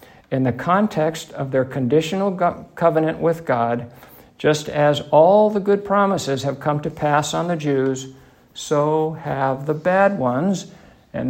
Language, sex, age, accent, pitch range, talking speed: English, male, 60-79, American, 130-160 Hz, 150 wpm